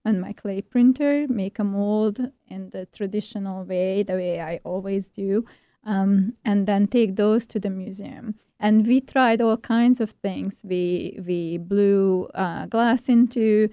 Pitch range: 195-225 Hz